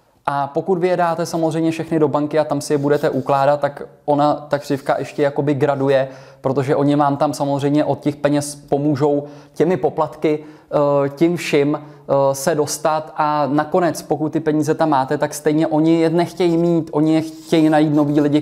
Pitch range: 135-150 Hz